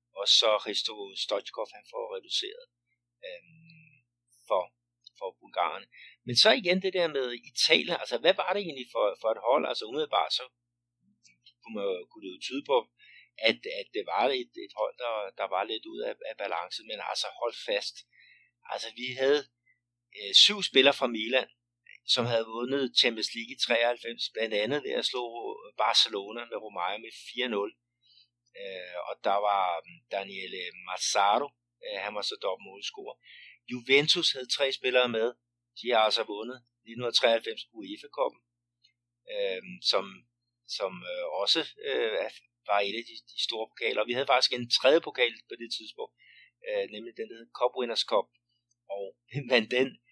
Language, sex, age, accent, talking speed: Danish, male, 60-79, native, 160 wpm